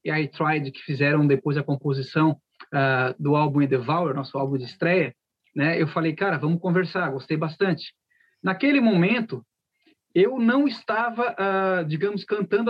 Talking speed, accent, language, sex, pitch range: 150 wpm, Brazilian, Portuguese, male, 155-195 Hz